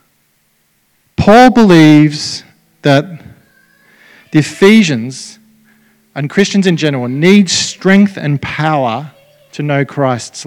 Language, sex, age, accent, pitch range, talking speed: English, male, 40-59, Australian, 140-180 Hz, 90 wpm